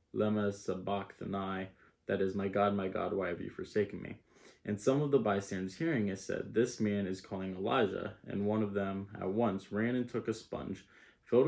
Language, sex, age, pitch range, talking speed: English, male, 20-39, 100-115 Hz, 200 wpm